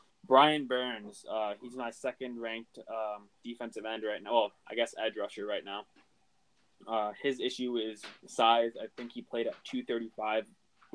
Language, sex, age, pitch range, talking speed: English, male, 20-39, 110-120 Hz, 175 wpm